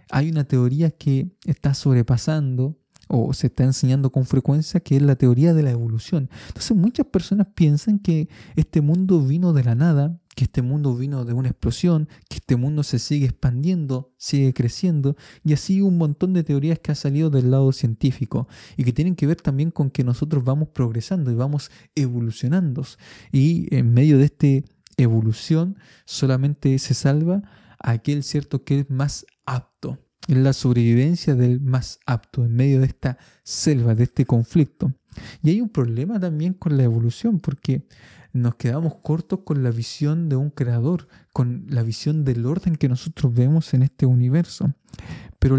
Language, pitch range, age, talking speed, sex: Spanish, 130-160 Hz, 20-39, 170 wpm, male